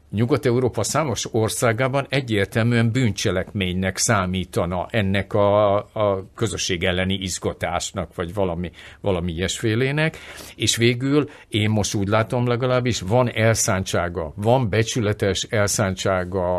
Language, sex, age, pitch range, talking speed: Hungarian, male, 50-69, 95-115 Hz, 100 wpm